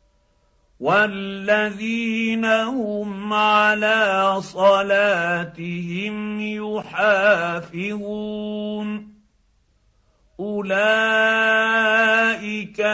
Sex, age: male, 50-69